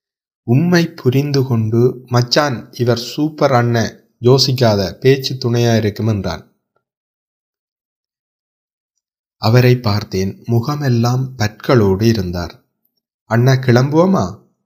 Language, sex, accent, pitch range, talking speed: Tamil, male, native, 100-125 Hz, 80 wpm